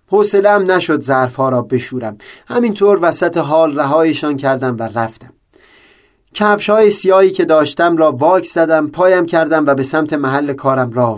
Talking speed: 145 wpm